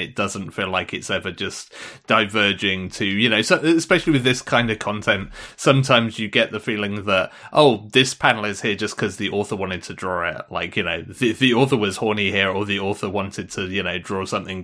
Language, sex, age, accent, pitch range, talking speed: English, male, 30-49, British, 100-130 Hz, 225 wpm